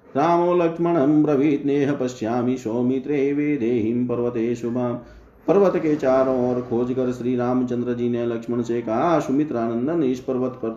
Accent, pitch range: native, 120-145 Hz